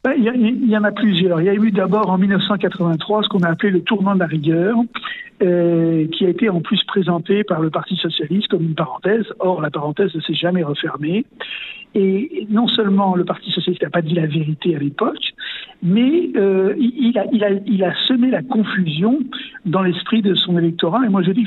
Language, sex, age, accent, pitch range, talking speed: French, male, 60-79, French, 170-210 Hz, 210 wpm